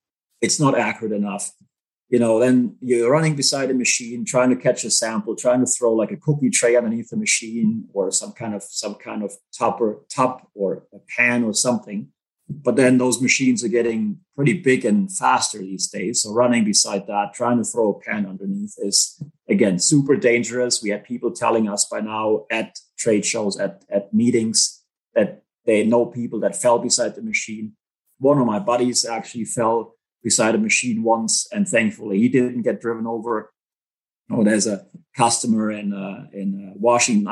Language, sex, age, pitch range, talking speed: English, male, 30-49, 110-150 Hz, 185 wpm